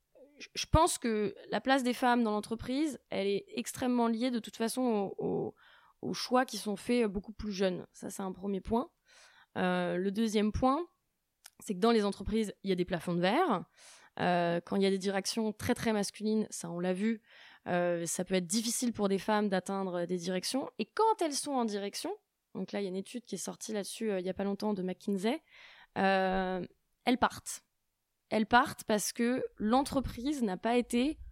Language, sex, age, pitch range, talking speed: French, female, 20-39, 195-240 Hz, 205 wpm